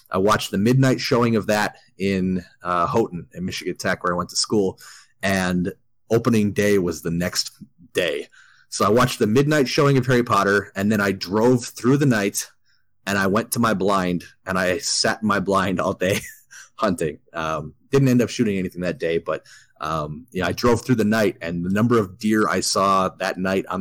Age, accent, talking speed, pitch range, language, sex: 30-49, American, 205 wpm, 90-115 Hz, English, male